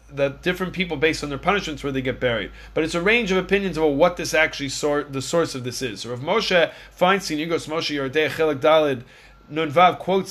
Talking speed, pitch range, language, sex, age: 215 wpm, 150-190 Hz, English, male, 30-49